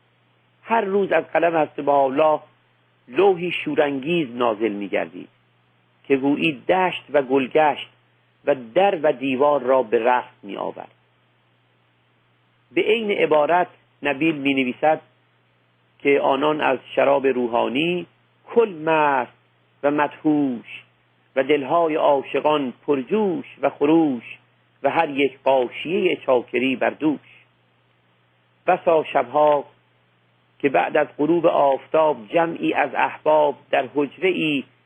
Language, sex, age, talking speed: Persian, male, 50-69, 105 wpm